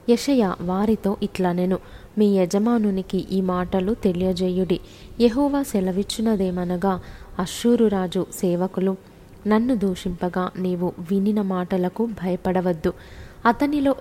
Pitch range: 185-215 Hz